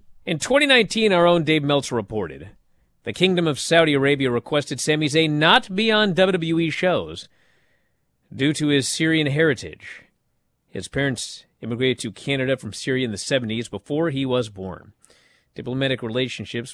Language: English